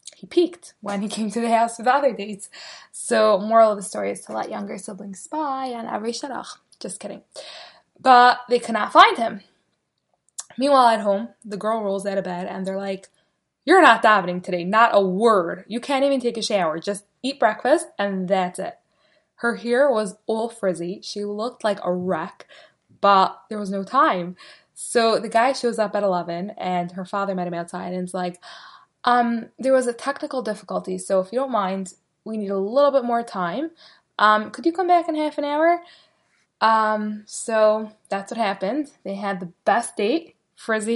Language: English